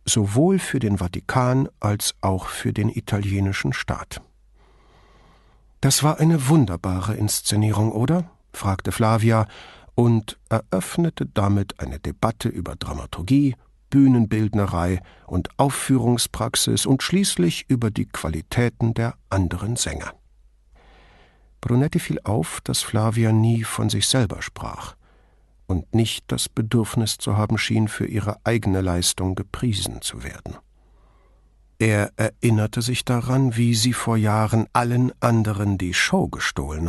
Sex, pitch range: male, 100-120 Hz